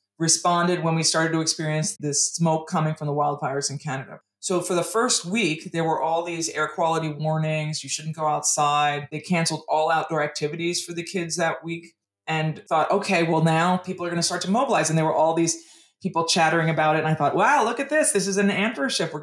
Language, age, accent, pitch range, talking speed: English, 20-39, American, 150-175 Hz, 230 wpm